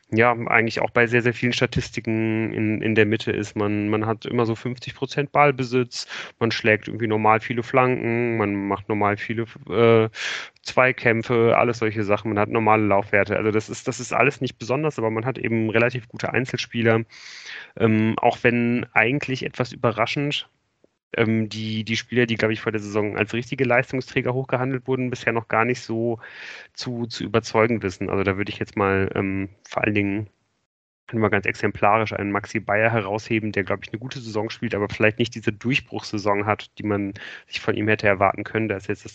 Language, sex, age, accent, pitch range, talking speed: German, male, 30-49, German, 100-120 Hz, 195 wpm